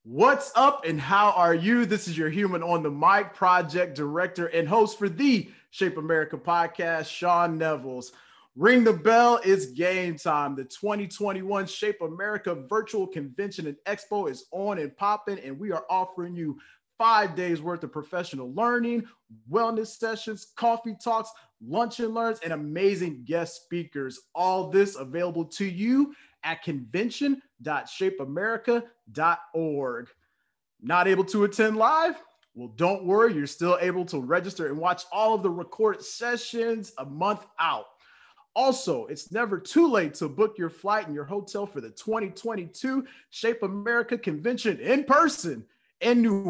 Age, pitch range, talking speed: 30-49, 165-225 Hz, 150 wpm